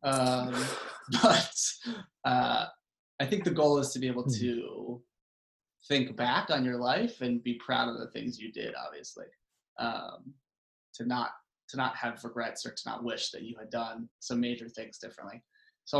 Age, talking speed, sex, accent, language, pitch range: 20-39, 175 wpm, male, American, English, 115-130 Hz